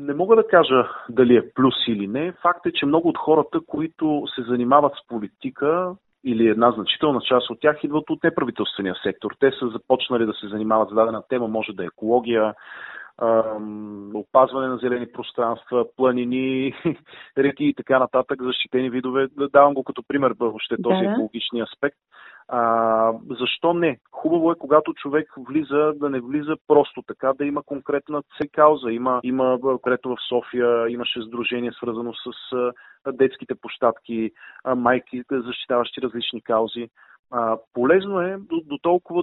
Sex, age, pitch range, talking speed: male, 30-49, 115-140 Hz, 150 wpm